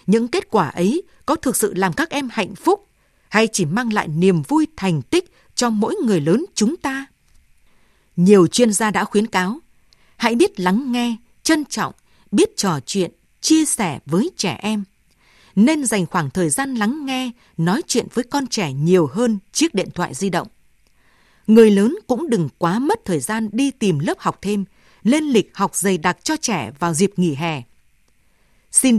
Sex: female